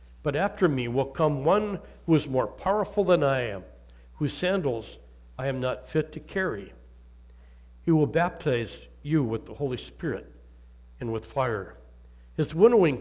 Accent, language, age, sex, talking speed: American, English, 60-79, male, 155 wpm